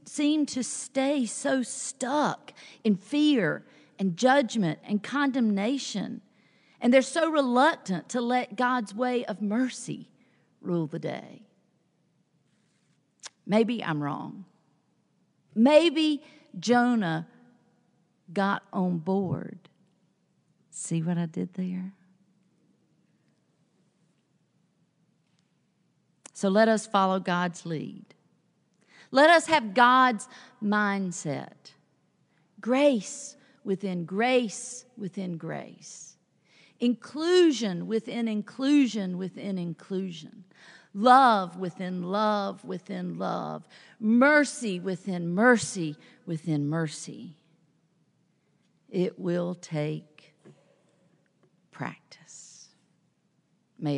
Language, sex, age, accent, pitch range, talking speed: English, female, 50-69, American, 175-245 Hz, 80 wpm